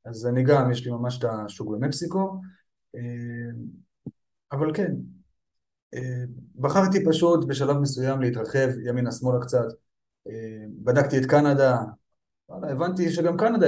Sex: male